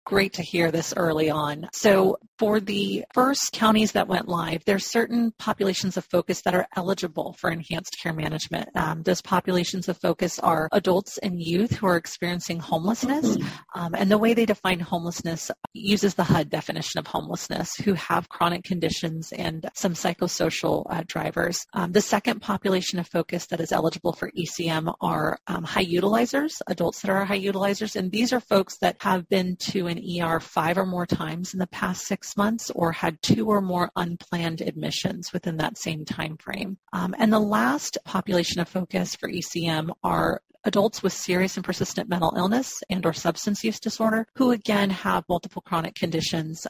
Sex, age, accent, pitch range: female, 30-49, American, 175-210 Hz